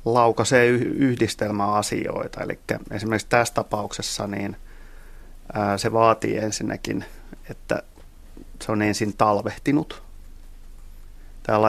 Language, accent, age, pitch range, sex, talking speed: Finnish, native, 30-49, 100-115 Hz, male, 75 wpm